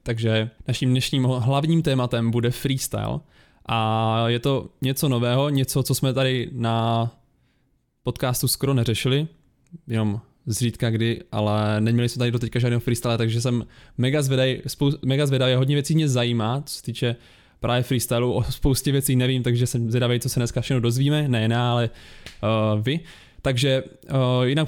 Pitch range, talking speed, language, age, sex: 115-135 Hz, 155 wpm, Czech, 20-39, male